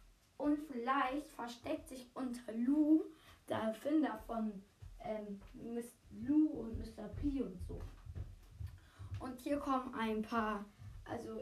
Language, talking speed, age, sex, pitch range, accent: German, 120 wpm, 10-29, female, 215-265 Hz, German